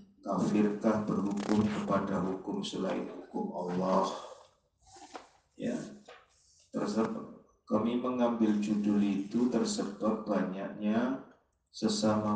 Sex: male